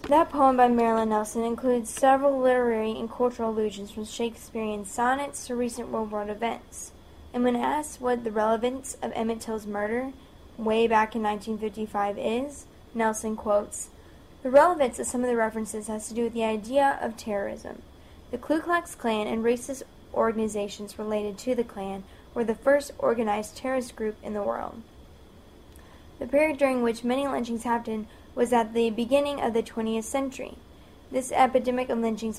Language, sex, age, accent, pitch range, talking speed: English, female, 10-29, American, 215-250 Hz, 165 wpm